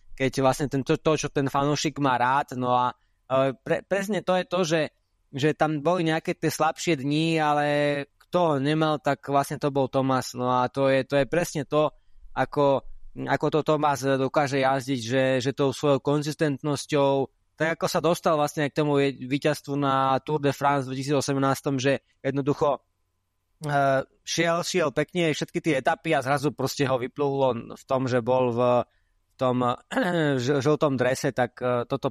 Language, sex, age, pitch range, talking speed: Slovak, male, 20-39, 130-150 Hz, 170 wpm